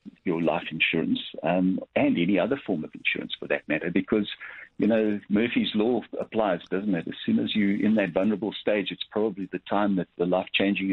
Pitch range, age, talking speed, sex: 90-110 Hz, 50-69, 200 wpm, male